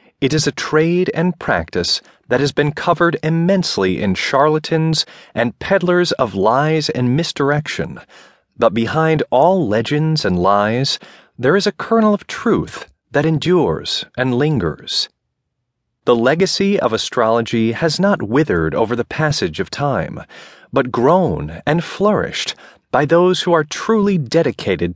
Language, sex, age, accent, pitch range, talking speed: English, male, 30-49, American, 120-170 Hz, 135 wpm